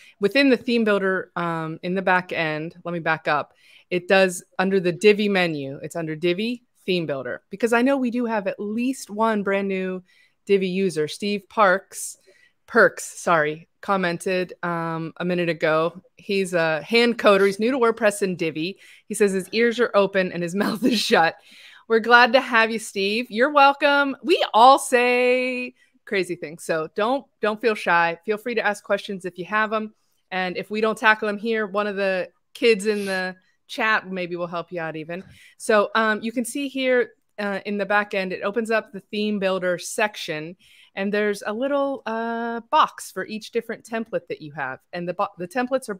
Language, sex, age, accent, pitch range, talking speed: English, female, 20-39, American, 175-225 Hz, 195 wpm